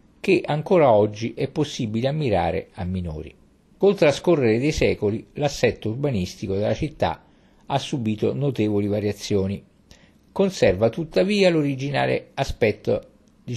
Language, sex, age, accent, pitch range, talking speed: Italian, male, 50-69, native, 100-140 Hz, 110 wpm